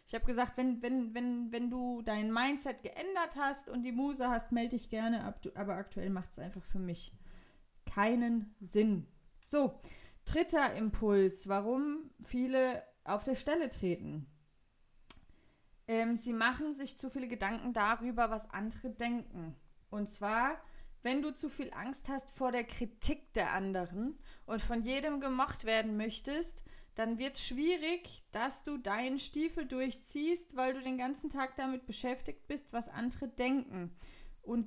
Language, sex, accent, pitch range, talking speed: German, female, German, 210-270 Hz, 155 wpm